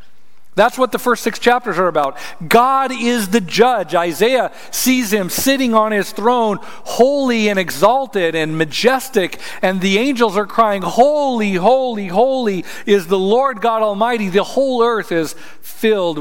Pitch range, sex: 165-230 Hz, male